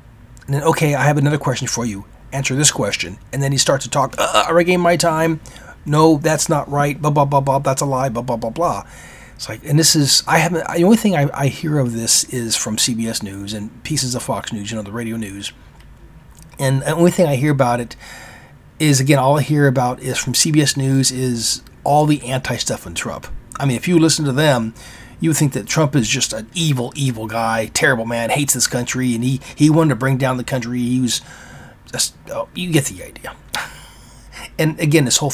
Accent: American